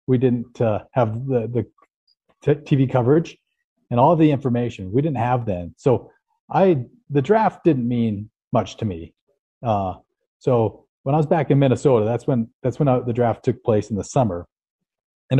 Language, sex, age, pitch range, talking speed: English, male, 40-59, 105-130 Hz, 185 wpm